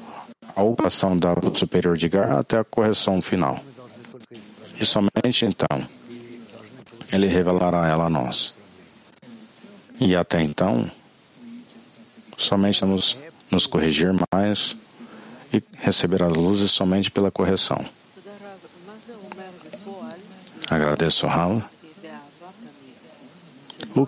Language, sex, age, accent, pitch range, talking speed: English, male, 50-69, Brazilian, 90-120 Hz, 90 wpm